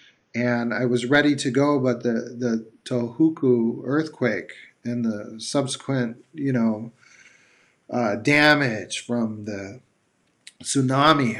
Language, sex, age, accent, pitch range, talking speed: English, male, 40-59, American, 115-140 Hz, 110 wpm